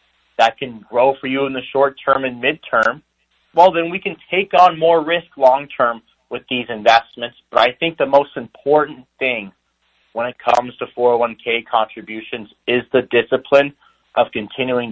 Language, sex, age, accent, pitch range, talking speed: English, male, 30-49, American, 105-135 Hz, 160 wpm